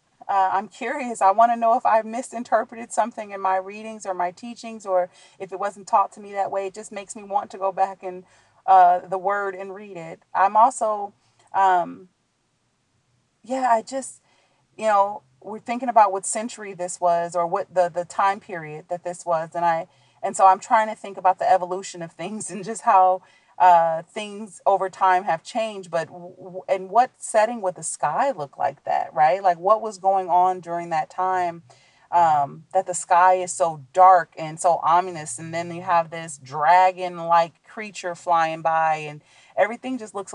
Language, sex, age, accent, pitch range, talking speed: English, female, 30-49, American, 165-195 Hz, 190 wpm